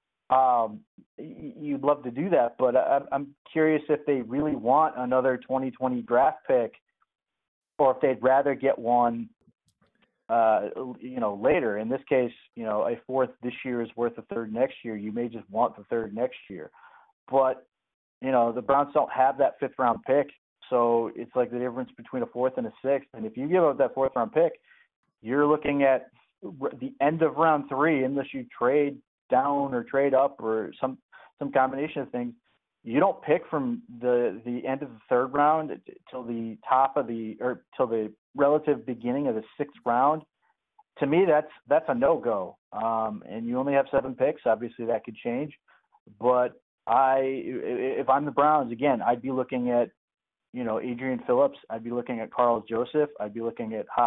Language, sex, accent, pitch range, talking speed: English, male, American, 120-145 Hz, 185 wpm